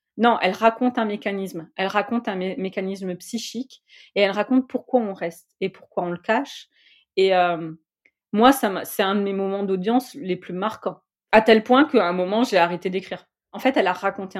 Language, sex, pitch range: French, female, 180-230 Hz